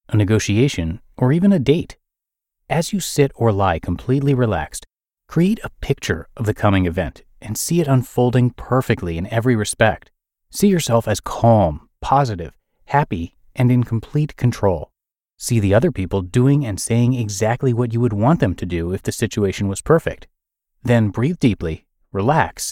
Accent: American